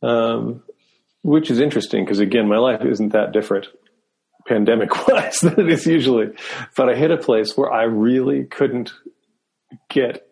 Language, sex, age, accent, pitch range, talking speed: English, male, 40-59, American, 100-130 Hz, 155 wpm